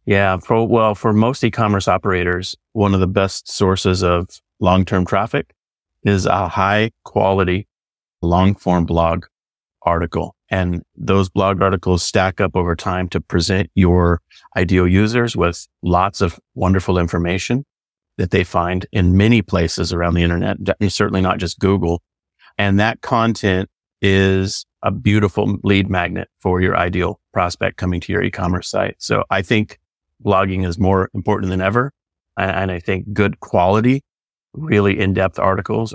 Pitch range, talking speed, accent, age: 90-100 Hz, 145 wpm, American, 30-49